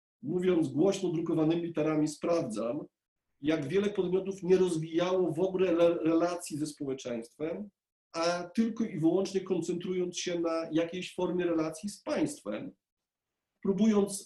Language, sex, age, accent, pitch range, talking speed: Polish, male, 40-59, native, 155-190 Hz, 120 wpm